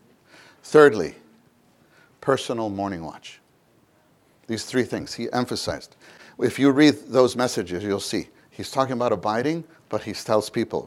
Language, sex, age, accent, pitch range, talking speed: English, male, 50-69, American, 105-140 Hz, 135 wpm